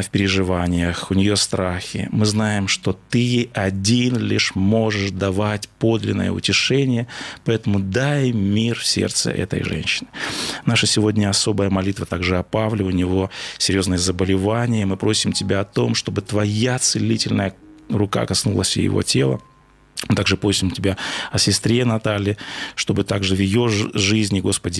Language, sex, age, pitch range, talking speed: Russian, male, 20-39, 90-110 Hz, 140 wpm